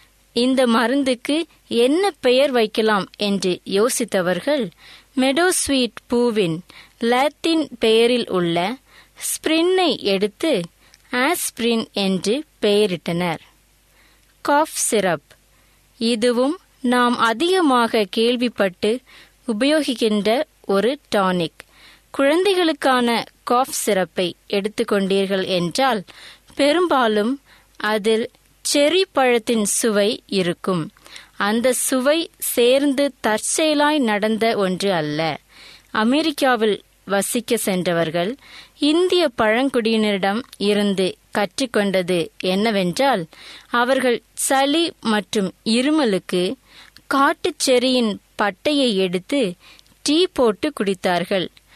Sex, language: female, Tamil